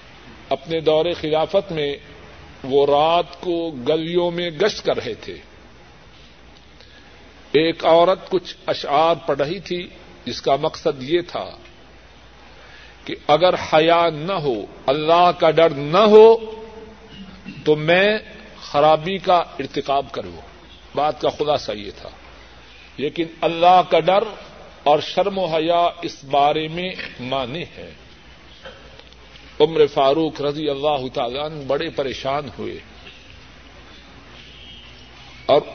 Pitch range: 140-185 Hz